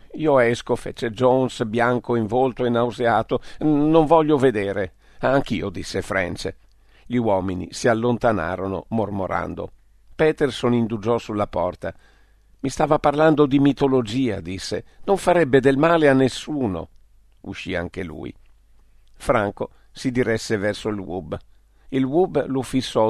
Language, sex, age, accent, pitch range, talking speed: Italian, male, 50-69, native, 100-130 Hz, 125 wpm